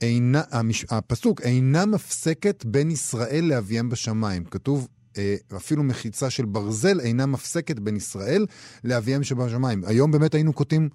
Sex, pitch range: male, 110-145 Hz